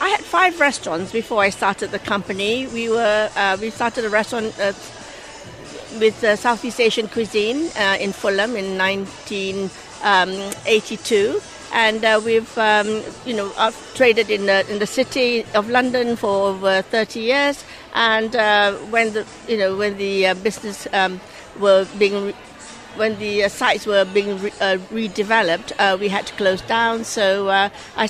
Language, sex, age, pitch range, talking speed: English, female, 60-79, 205-240 Hz, 170 wpm